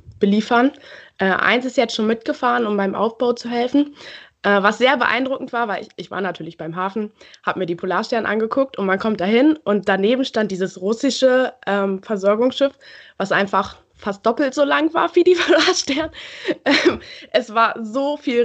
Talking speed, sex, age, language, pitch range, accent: 175 wpm, female, 20-39, German, 195-255 Hz, German